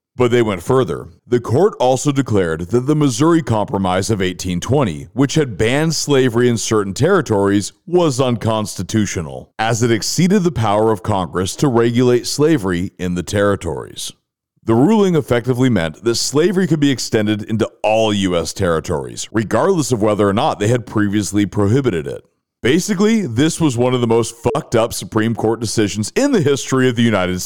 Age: 40-59